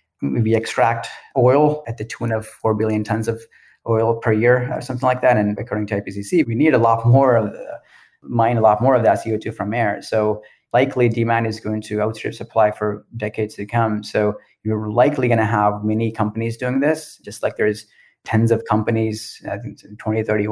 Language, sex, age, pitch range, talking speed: English, male, 30-49, 105-125 Hz, 200 wpm